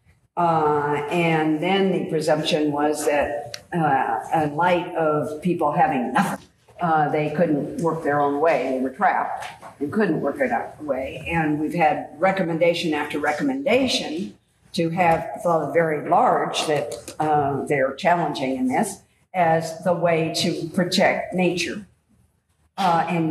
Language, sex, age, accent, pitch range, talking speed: English, female, 50-69, American, 150-175 Hz, 145 wpm